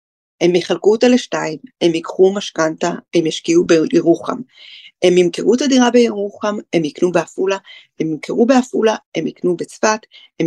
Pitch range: 185-250 Hz